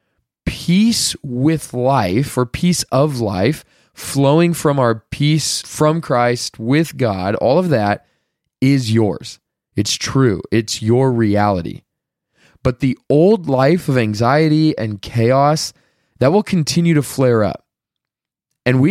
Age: 20-39